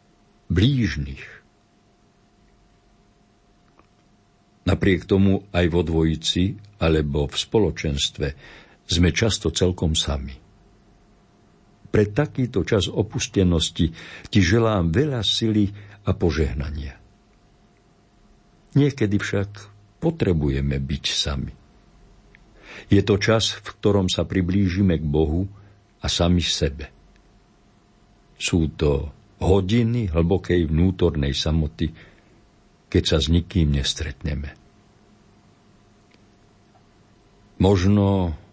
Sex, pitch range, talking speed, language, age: male, 80-100 Hz, 80 wpm, Slovak, 60-79